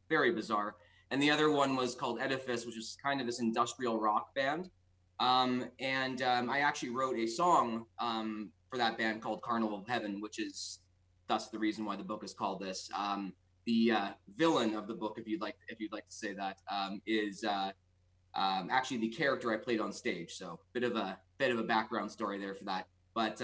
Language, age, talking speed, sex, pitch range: English, 20-39, 220 wpm, male, 100-120 Hz